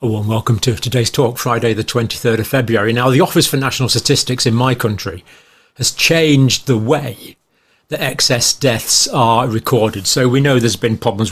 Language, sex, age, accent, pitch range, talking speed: English, male, 40-59, British, 115-135 Hz, 185 wpm